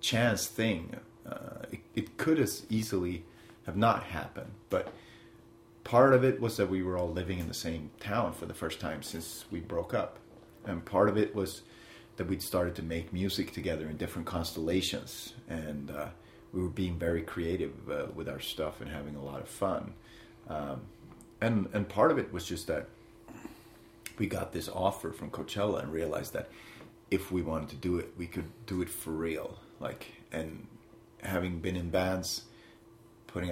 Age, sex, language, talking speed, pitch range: 30-49, male, English, 185 wpm, 85-110 Hz